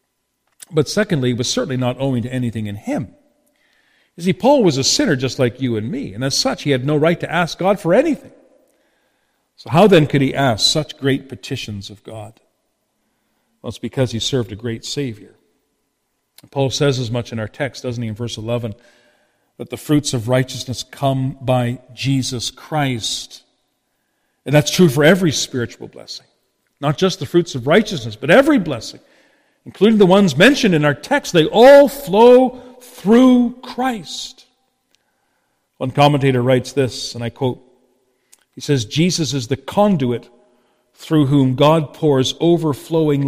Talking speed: 165 wpm